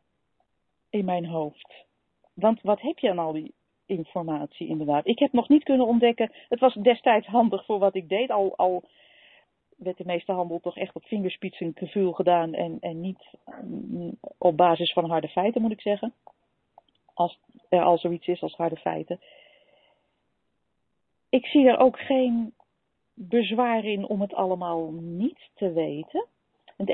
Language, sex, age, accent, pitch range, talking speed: Dutch, female, 40-59, Dutch, 175-220 Hz, 160 wpm